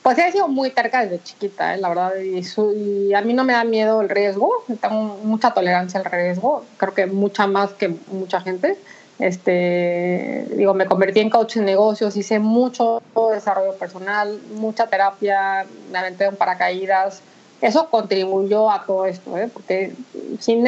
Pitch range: 185-225 Hz